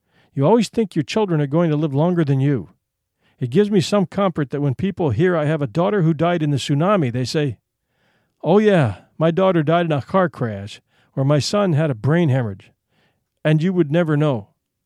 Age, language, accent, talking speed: 50-69, English, American, 215 wpm